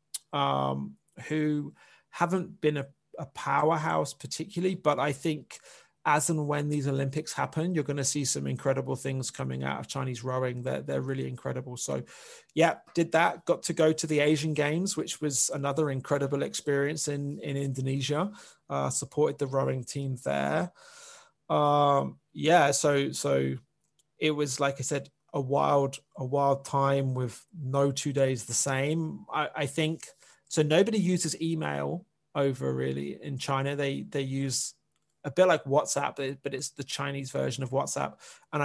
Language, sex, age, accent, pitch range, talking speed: English, male, 30-49, British, 135-155 Hz, 160 wpm